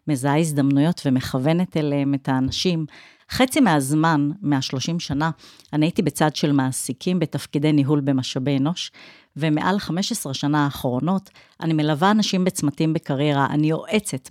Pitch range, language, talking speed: 145-190 Hz, Hebrew, 125 wpm